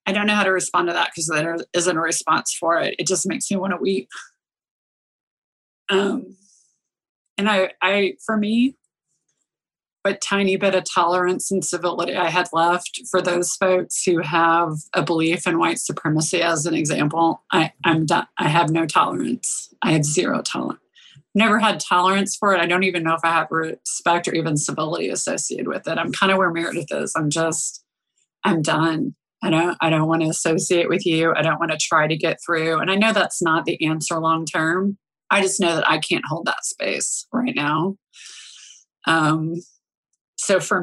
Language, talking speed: English, 190 wpm